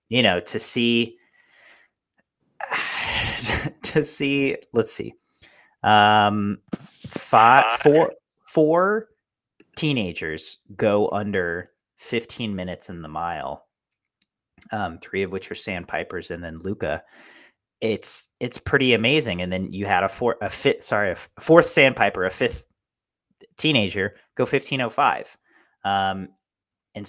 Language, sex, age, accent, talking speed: English, male, 30-49, American, 115 wpm